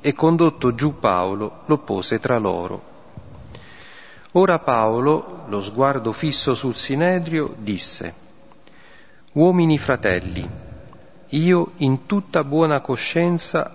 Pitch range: 115-155 Hz